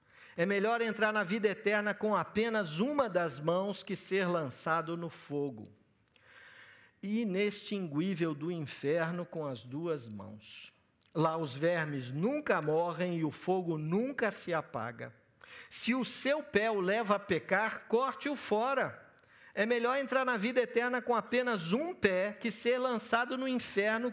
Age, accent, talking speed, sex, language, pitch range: 50-69, Brazilian, 145 wpm, male, Portuguese, 160-230 Hz